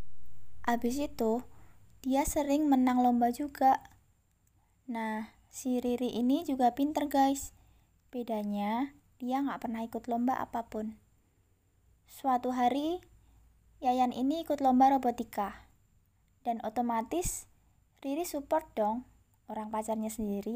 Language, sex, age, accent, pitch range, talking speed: Indonesian, female, 20-39, native, 215-270 Hz, 105 wpm